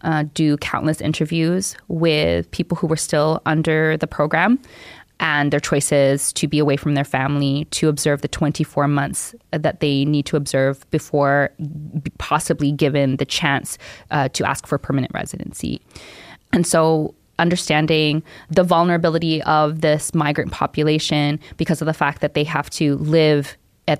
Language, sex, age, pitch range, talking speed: English, female, 20-39, 150-170 Hz, 155 wpm